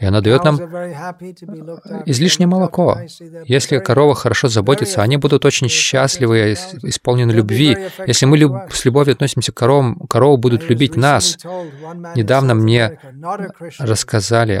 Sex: male